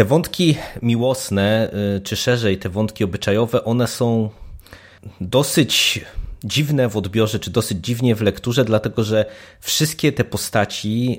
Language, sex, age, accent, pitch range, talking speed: Polish, male, 30-49, native, 105-125 Hz, 130 wpm